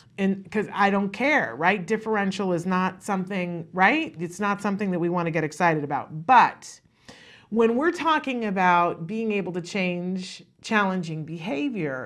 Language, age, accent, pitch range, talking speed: English, 40-59, American, 170-230 Hz, 155 wpm